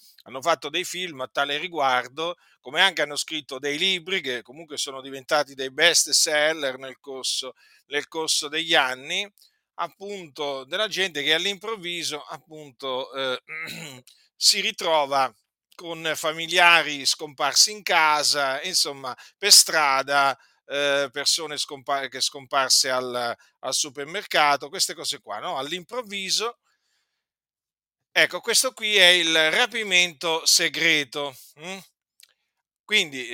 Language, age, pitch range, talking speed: Italian, 50-69, 140-180 Hz, 115 wpm